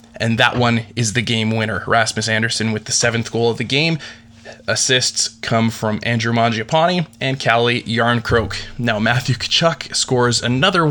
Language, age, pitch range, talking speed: English, 20-39, 110-125 Hz, 155 wpm